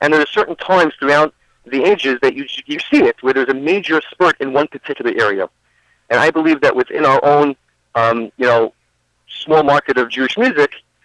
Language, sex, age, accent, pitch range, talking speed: English, male, 40-59, American, 120-150 Hz, 200 wpm